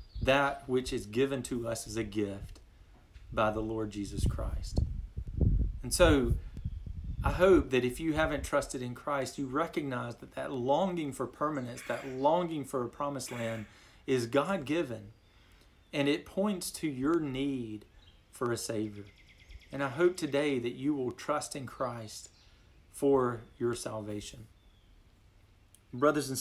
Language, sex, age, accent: English, male, 40-59, American